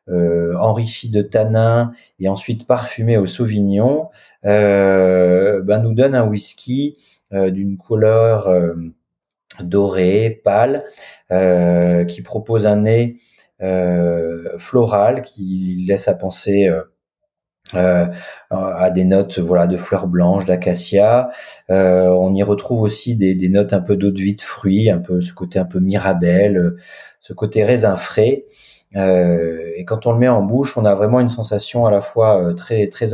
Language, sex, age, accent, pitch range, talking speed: French, male, 30-49, French, 90-110 Hz, 160 wpm